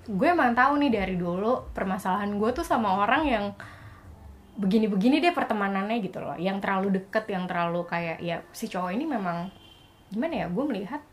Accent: native